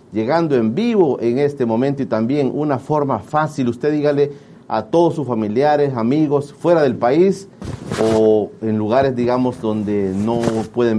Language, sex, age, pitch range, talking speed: Spanish, male, 40-59, 115-155 Hz, 155 wpm